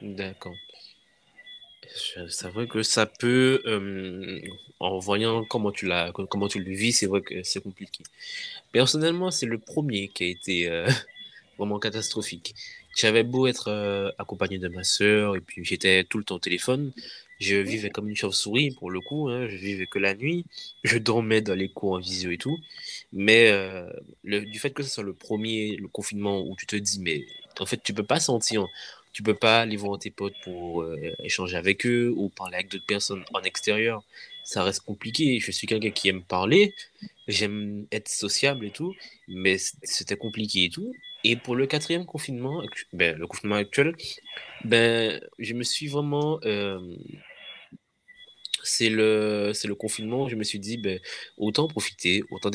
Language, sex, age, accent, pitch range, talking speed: French, male, 20-39, French, 100-120 Hz, 185 wpm